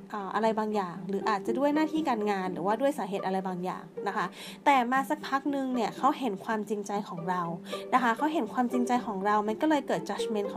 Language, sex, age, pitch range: Thai, female, 20-39, 200-270 Hz